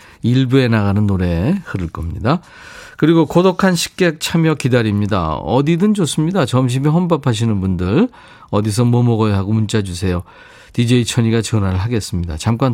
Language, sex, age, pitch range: Korean, male, 40-59, 95-135 Hz